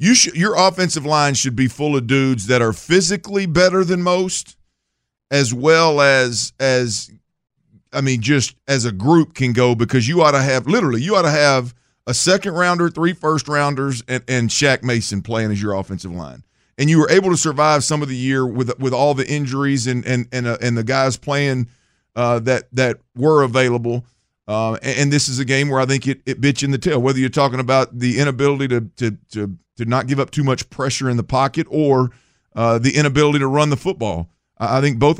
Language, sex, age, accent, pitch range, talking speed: English, male, 50-69, American, 120-145 Hz, 215 wpm